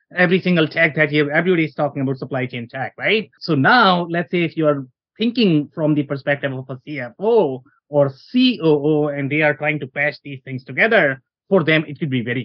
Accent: Indian